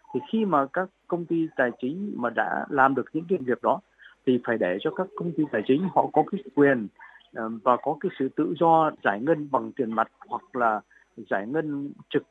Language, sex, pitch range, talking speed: Vietnamese, male, 120-165 Hz, 220 wpm